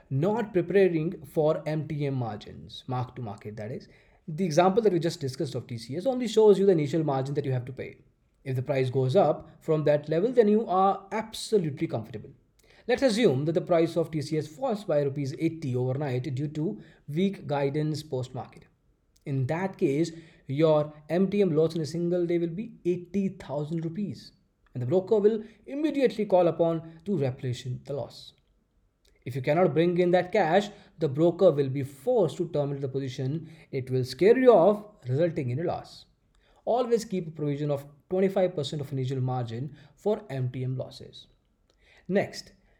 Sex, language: male, English